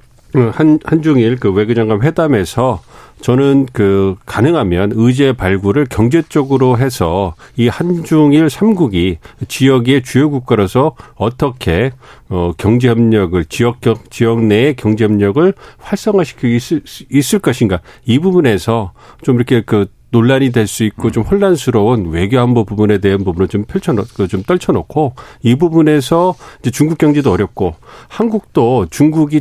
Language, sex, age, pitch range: Korean, male, 40-59, 105-145 Hz